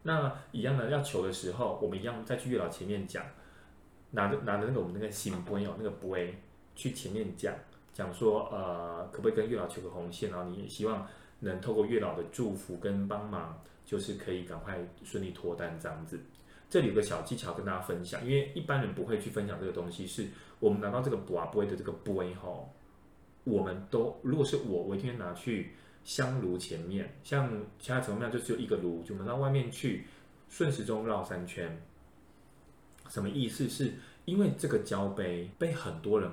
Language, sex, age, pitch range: Chinese, male, 20-39, 90-125 Hz